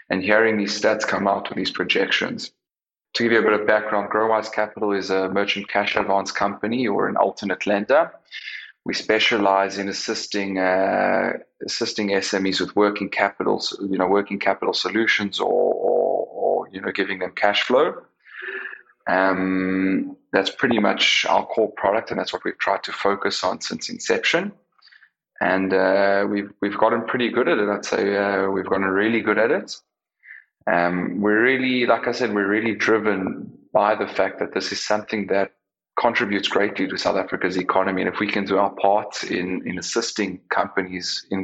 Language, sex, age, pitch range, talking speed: English, male, 20-39, 95-105 Hz, 175 wpm